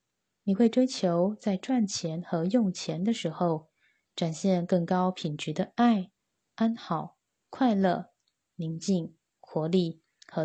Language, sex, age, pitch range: Chinese, female, 20-39, 165-210 Hz